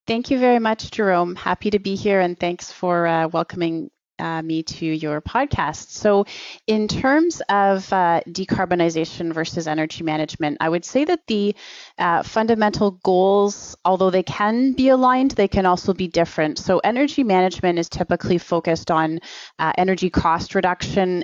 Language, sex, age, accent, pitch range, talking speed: English, female, 30-49, American, 160-195 Hz, 160 wpm